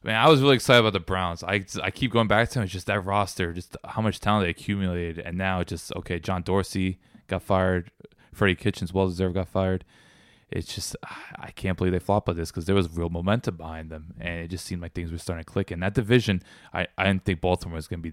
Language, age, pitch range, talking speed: English, 20-39, 80-95 Hz, 255 wpm